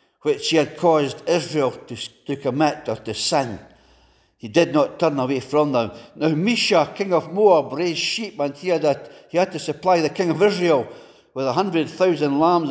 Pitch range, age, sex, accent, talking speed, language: 135-170 Hz, 60-79, male, British, 190 wpm, English